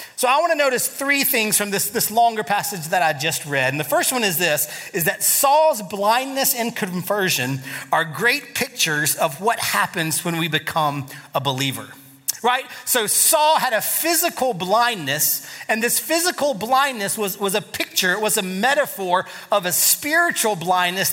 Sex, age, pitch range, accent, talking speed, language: male, 30-49, 175-245 Hz, American, 175 wpm, English